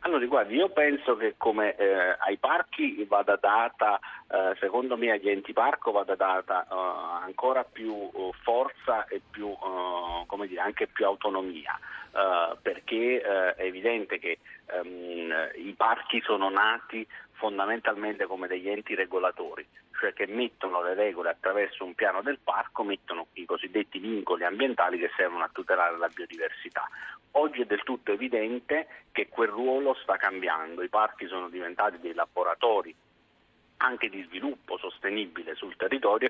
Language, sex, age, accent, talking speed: Italian, male, 40-59, native, 145 wpm